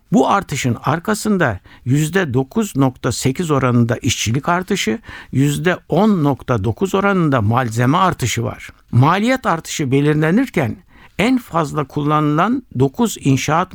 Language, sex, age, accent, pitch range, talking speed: Turkish, male, 60-79, native, 130-175 Hz, 85 wpm